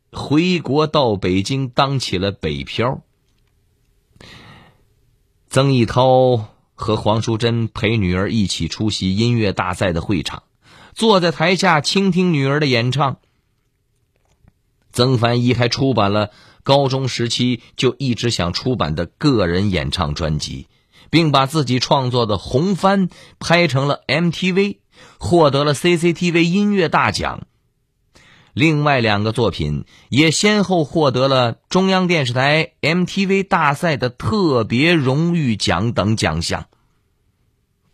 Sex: male